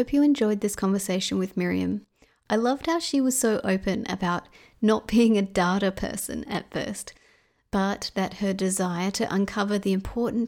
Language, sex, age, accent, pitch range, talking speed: English, female, 30-49, Australian, 190-230 Hz, 180 wpm